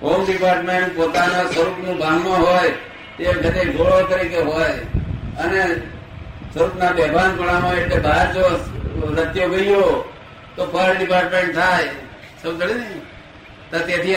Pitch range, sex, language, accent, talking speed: 150-185 Hz, male, Gujarati, native, 60 wpm